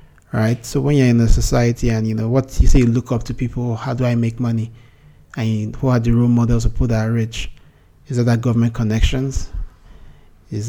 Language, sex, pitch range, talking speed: English, male, 110-125 Hz, 215 wpm